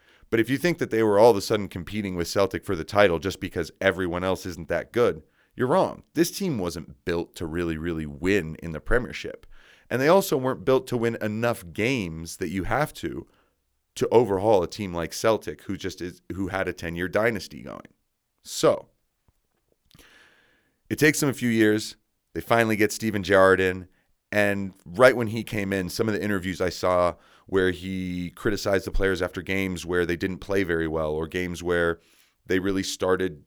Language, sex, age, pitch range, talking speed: English, male, 30-49, 90-110 Hz, 195 wpm